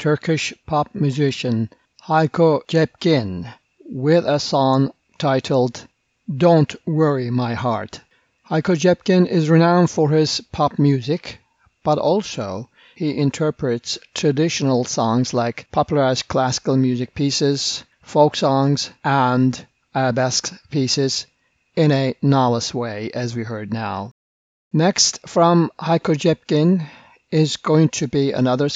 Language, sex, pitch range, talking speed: English, male, 120-155 Hz, 115 wpm